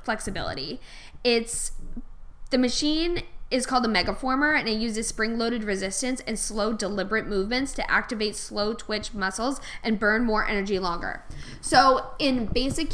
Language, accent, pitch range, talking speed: English, American, 210-250 Hz, 140 wpm